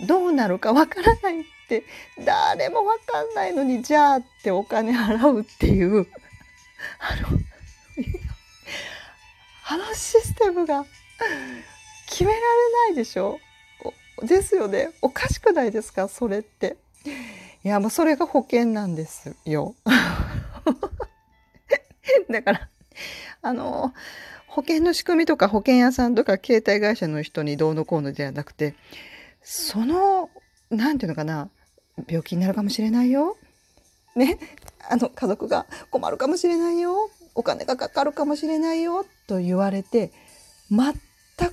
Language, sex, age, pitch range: Japanese, female, 40-59, 205-340 Hz